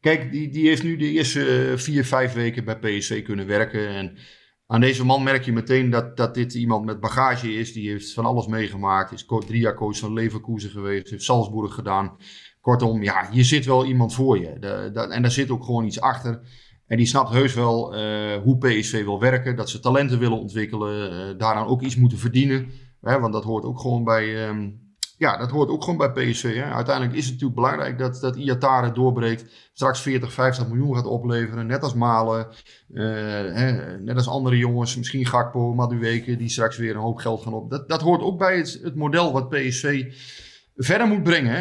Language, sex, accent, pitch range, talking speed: Dutch, male, Dutch, 110-130 Hz, 215 wpm